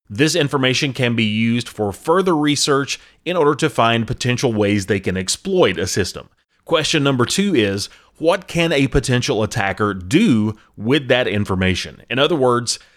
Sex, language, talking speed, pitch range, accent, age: male, English, 160 wpm, 110-145 Hz, American, 30-49